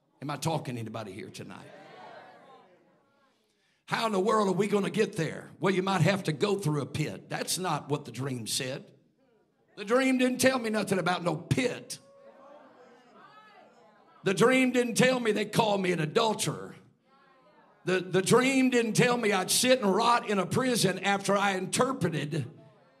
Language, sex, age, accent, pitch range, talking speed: English, male, 50-69, American, 180-230 Hz, 175 wpm